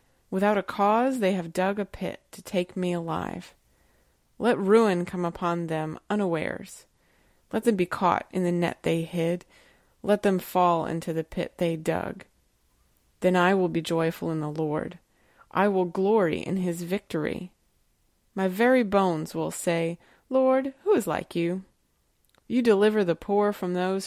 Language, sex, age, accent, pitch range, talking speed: English, female, 30-49, American, 170-200 Hz, 160 wpm